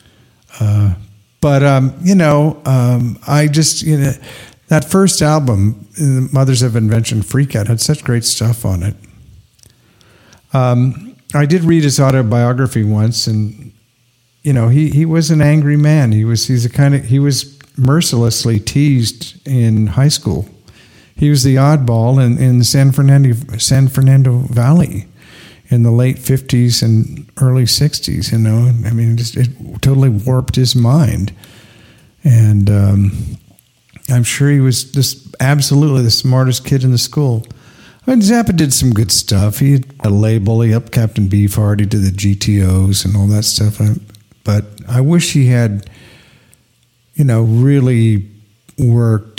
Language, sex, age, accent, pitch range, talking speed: English, male, 50-69, American, 110-135 Hz, 155 wpm